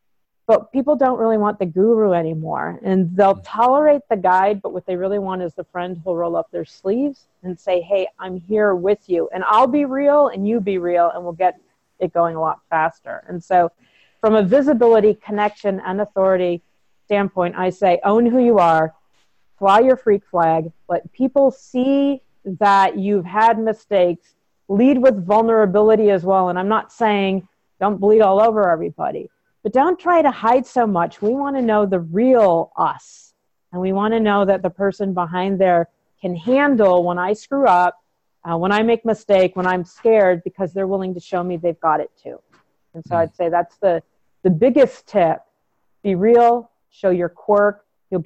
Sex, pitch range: female, 175-220 Hz